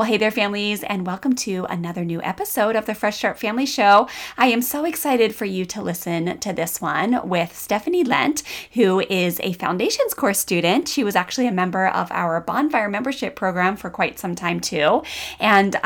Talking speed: 195 wpm